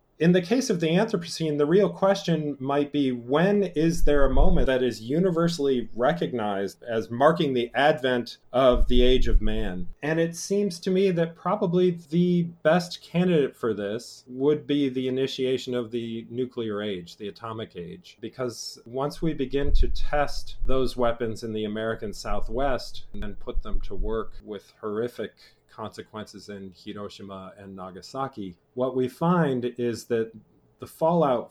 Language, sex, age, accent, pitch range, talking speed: English, male, 40-59, American, 110-150 Hz, 160 wpm